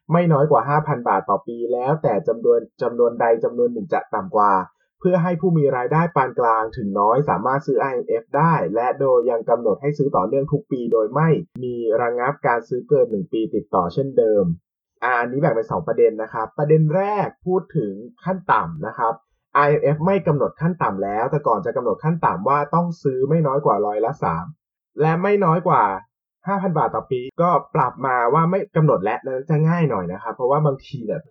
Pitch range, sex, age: 135-185 Hz, male, 20-39